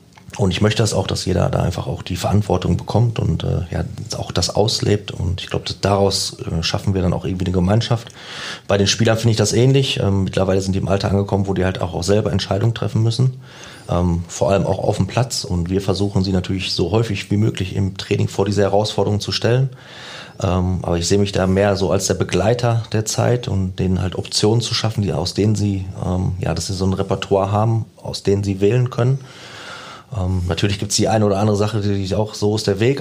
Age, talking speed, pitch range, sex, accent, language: 30-49, 235 wpm, 95-110 Hz, male, German, German